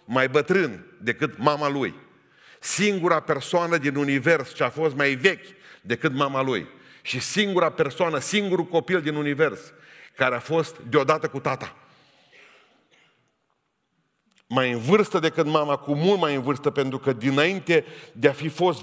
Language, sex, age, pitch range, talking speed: Romanian, male, 40-59, 135-180 Hz, 150 wpm